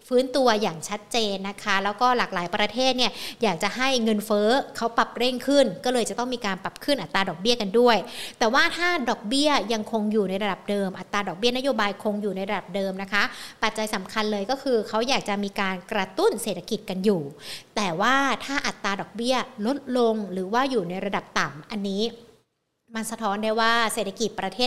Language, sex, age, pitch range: Thai, female, 60-79, 205-245 Hz